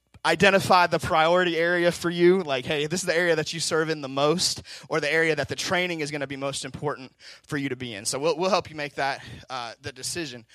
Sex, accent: male, American